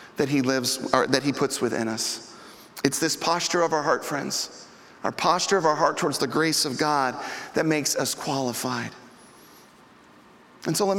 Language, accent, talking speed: English, American, 180 wpm